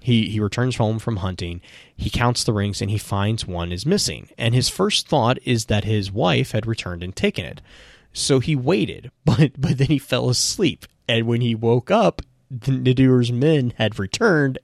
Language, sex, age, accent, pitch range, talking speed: English, male, 30-49, American, 100-125 Hz, 195 wpm